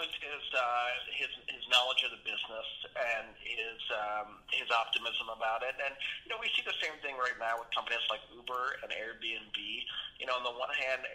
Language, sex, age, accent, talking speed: English, male, 30-49, American, 205 wpm